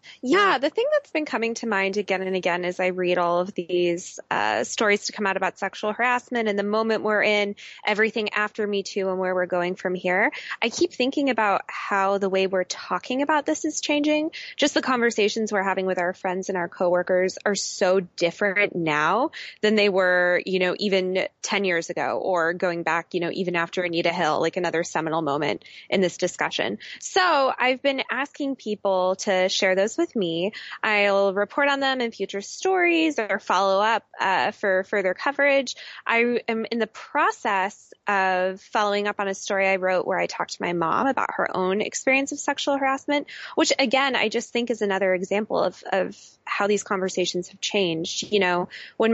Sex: female